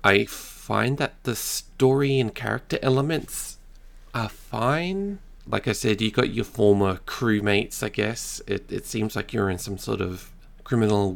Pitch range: 95-125 Hz